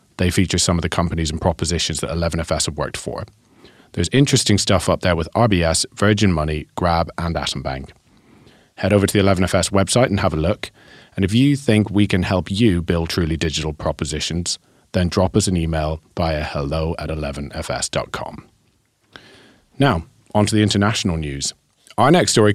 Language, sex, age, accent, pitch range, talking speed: English, male, 30-49, British, 80-100 Hz, 175 wpm